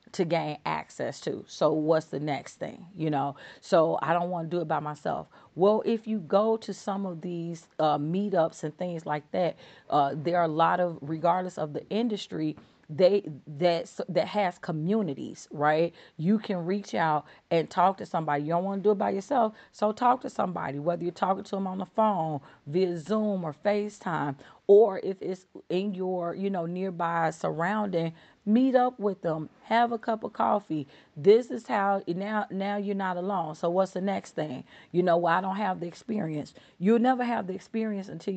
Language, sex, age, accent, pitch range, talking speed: English, female, 40-59, American, 160-200 Hz, 195 wpm